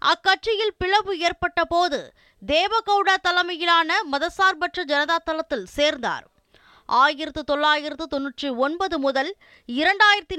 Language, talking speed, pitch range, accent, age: Tamil, 100 wpm, 300-370 Hz, native, 20-39